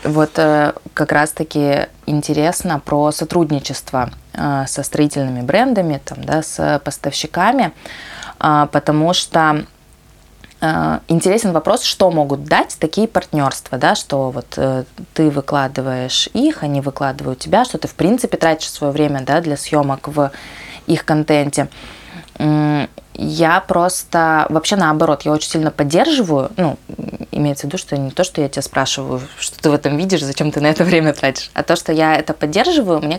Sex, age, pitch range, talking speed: female, 20-39, 140-165 Hz, 150 wpm